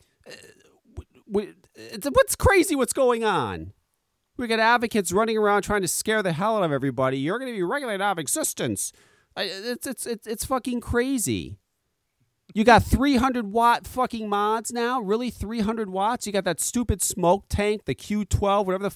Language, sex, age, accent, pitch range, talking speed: English, male, 40-59, American, 190-260 Hz, 170 wpm